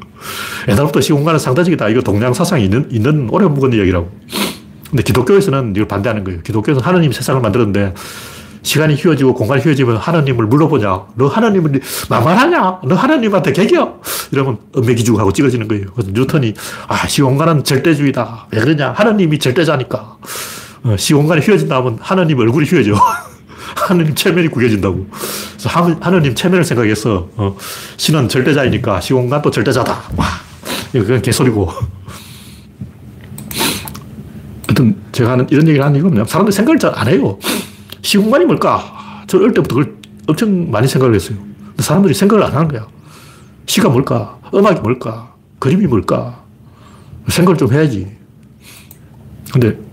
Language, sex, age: Korean, male, 40-59